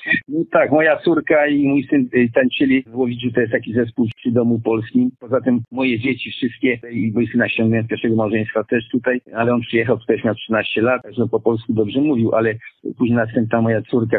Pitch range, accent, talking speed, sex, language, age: 115-140 Hz, native, 205 wpm, male, Polish, 50-69